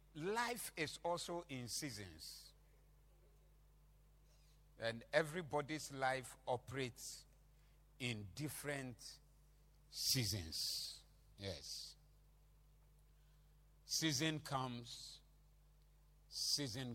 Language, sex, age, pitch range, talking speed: English, male, 50-69, 125-155 Hz, 55 wpm